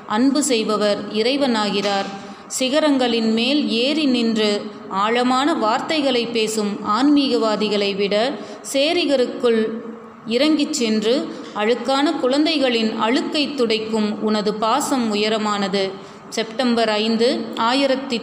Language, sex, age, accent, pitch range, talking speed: Tamil, female, 30-49, native, 210-250 Hz, 80 wpm